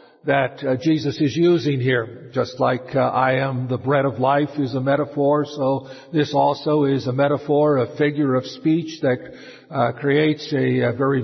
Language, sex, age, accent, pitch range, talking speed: English, male, 50-69, American, 130-155 Hz, 180 wpm